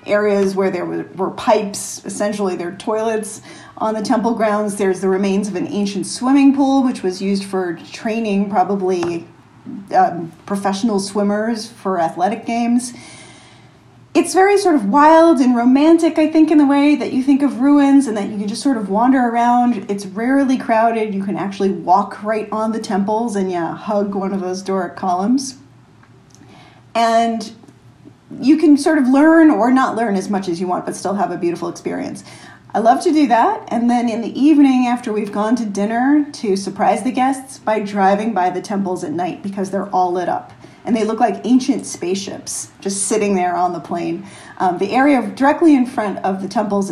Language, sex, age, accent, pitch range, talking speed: English, female, 40-59, American, 190-250 Hz, 190 wpm